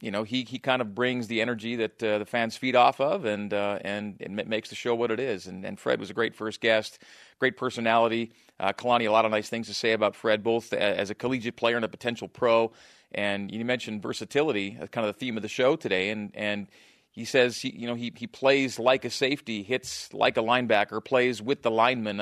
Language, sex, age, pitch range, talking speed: English, male, 40-59, 105-125 Hz, 240 wpm